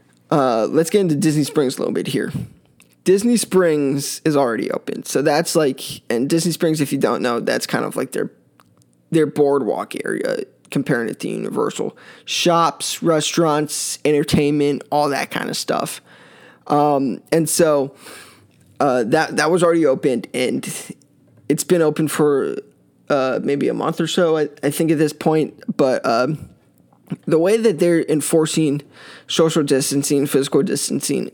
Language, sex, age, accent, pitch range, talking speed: English, male, 20-39, American, 145-170 Hz, 155 wpm